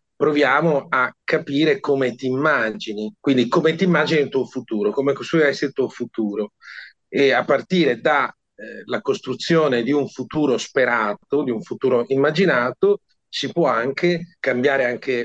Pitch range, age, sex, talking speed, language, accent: 115-145 Hz, 40-59, male, 145 wpm, Italian, native